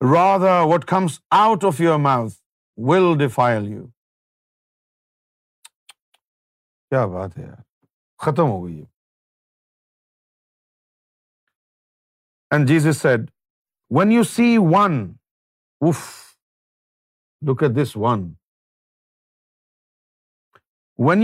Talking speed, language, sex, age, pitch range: 90 wpm, Urdu, male, 50-69, 120-170 Hz